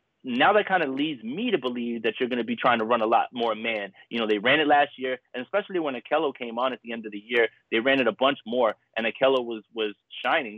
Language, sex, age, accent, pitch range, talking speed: English, male, 30-49, American, 110-150 Hz, 285 wpm